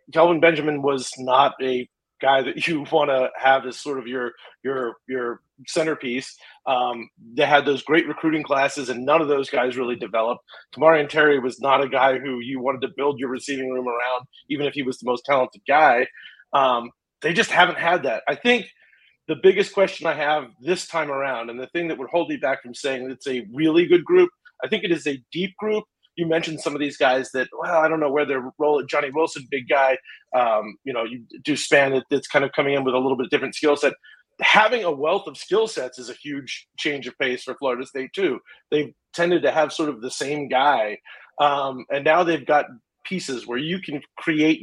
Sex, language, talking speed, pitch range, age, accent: male, English, 225 wpm, 130-165 Hz, 30-49, American